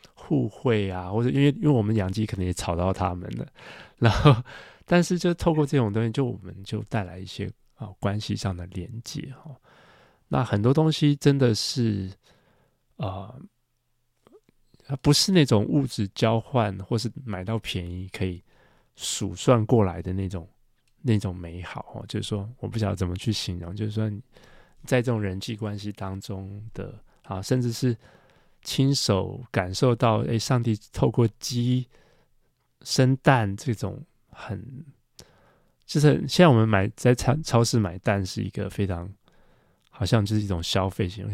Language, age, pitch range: Chinese, 20-39, 100-125 Hz